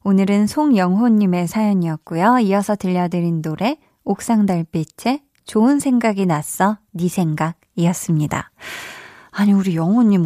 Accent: native